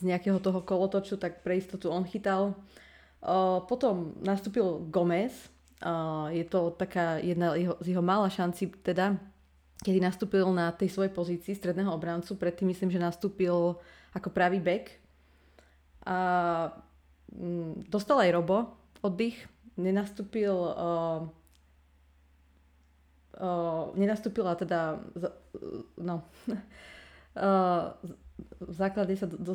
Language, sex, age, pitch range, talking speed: Slovak, female, 30-49, 170-195 Hz, 110 wpm